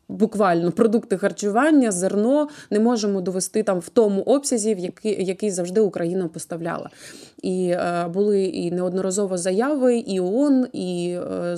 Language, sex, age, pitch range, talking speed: Ukrainian, female, 20-39, 185-230 Hz, 140 wpm